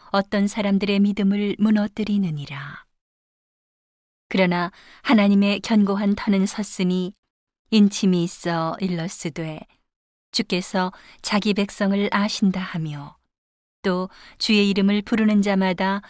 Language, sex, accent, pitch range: Korean, female, native, 180-210 Hz